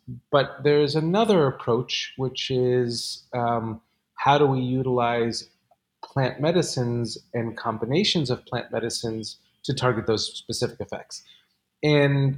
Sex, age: male, 30-49